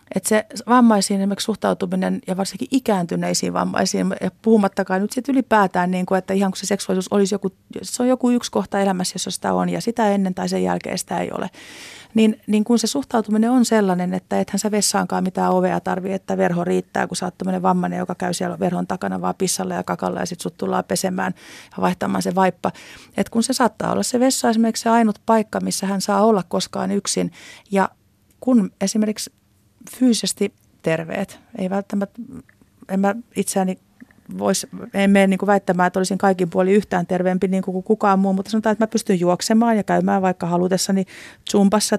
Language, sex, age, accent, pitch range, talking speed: Finnish, female, 30-49, native, 185-215 Hz, 190 wpm